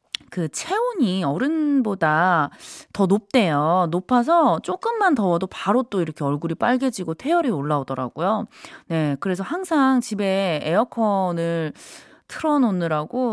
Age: 20-39